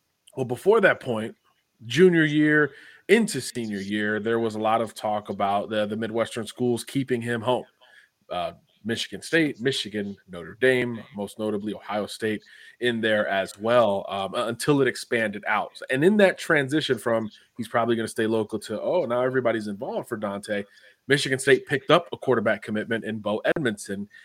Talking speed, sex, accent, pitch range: 175 wpm, male, American, 110-130 Hz